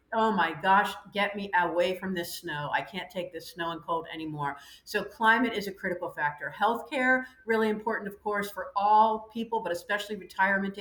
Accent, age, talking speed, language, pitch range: American, 50-69, 190 wpm, English, 195-240 Hz